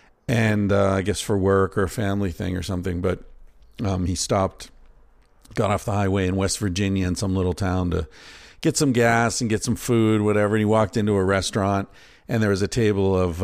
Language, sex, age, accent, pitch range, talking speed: English, male, 50-69, American, 90-120 Hz, 215 wpm